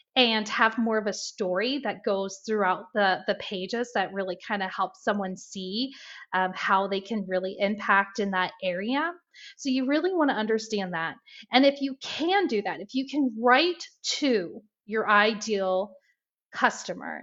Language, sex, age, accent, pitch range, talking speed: English, female, 30-49, American, 195-255 Hz, 165 wpm